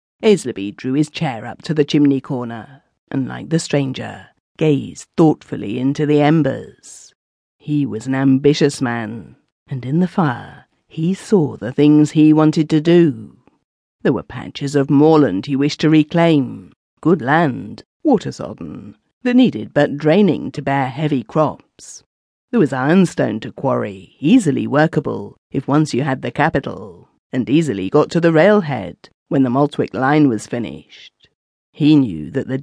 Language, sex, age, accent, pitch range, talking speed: English, female, 50-69, British, 125-155 Hz, 155 wpm